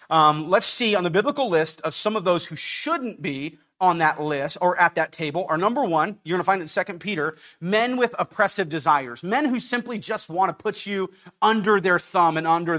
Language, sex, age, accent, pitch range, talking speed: English, male, 30-49, American, 165-220 Hz, 230 wpm